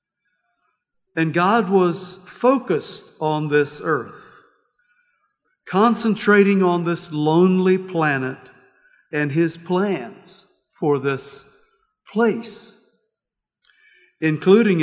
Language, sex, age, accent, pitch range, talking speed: English, male, 50-69, American, 155-205 Hz, 75 wpm